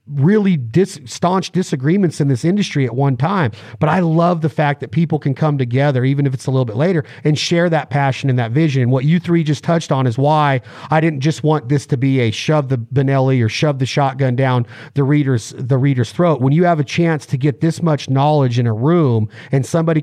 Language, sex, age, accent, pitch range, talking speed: English, male, 40-59, American, 135-170 Hz, 235 wpm